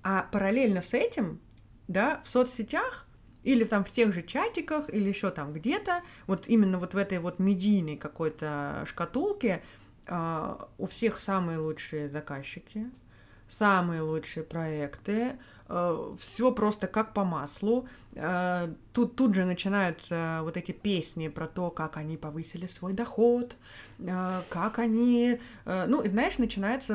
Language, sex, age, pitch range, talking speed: Russian, female, 20-39, 165-225 Hz, 130 wpm